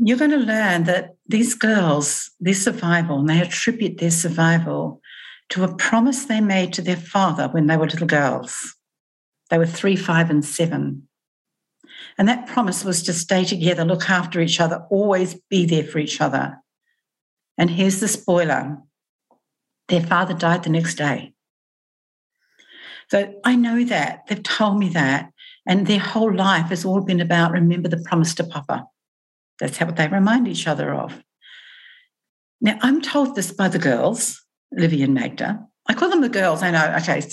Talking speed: 170 wpm